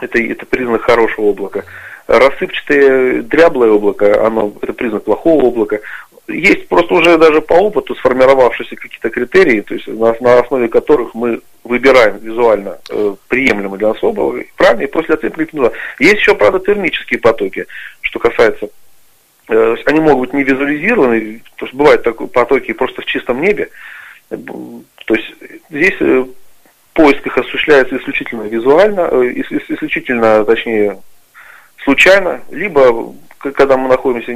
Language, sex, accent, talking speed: Russian, male, native, 135 wpm